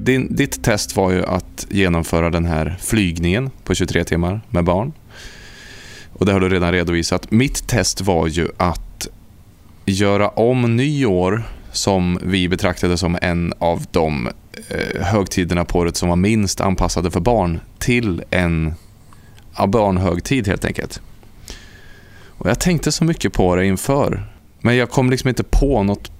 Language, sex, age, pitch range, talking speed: Swedish, male, 20-39, 90-110 Hz, 145 wpm